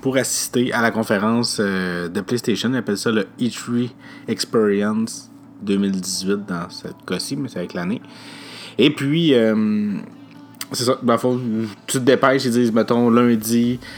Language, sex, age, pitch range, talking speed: French, male, 30-49, 95-120 Hz, 155 wpm